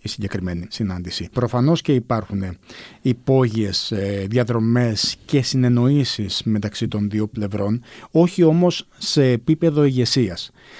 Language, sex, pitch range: Greek, male, 115-160 Hz